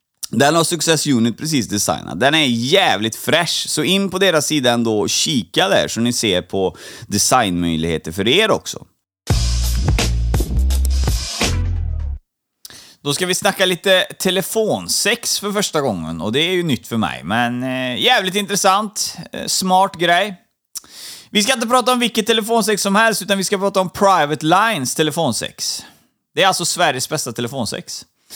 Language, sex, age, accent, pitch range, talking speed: Swedish, male, 30-49, native, 125-195 Hz, 150 wpm